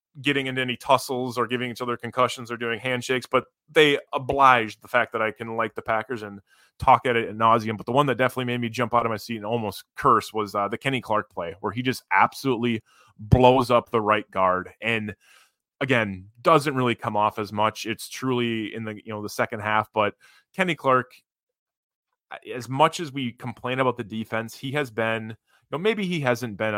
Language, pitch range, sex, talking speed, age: English, 105-125 Hz, male, 215 wpm, 20-39